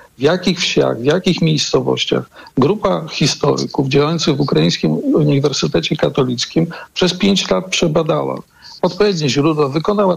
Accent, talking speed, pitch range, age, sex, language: native, 120 wpm, 140-170 Hz, 50-69, male, Polish